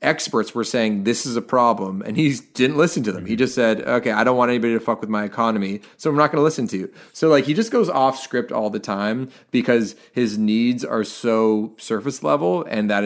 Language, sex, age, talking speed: English, male, 30-49, 245 wpm